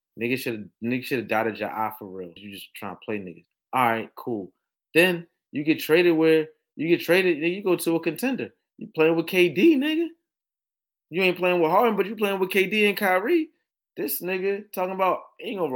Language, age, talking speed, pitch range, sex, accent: English, 20-39, 200 wpm, 140-190 Hz, male, American